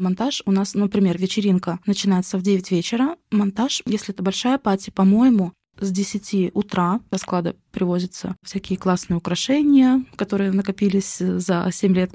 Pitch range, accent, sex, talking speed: 180-205 Hz, native, female, 145 wpm